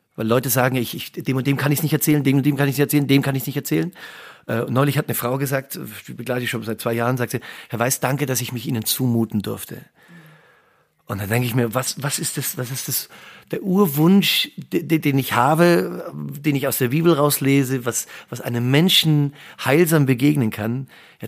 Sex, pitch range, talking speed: male, 120-150 Hz, 225 wpm